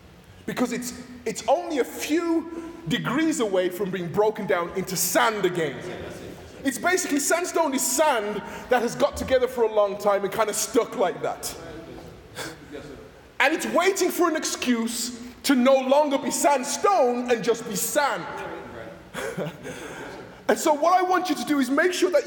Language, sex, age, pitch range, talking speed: English, male, 20-39, 220-305 Hz, 165 wpm